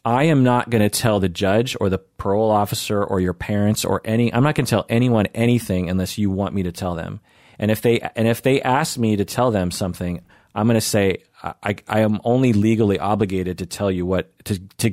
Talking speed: 235 wpm